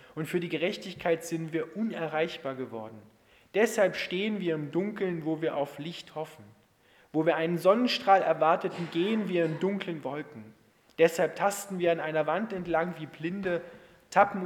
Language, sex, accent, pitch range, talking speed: German, male, German, 145-190 Hz, 160 wpm